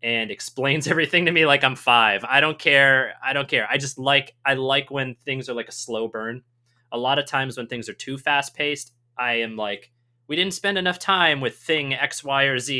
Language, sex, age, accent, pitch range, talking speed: English, male, 20-39, American, 120-145 Hz, 230 wpm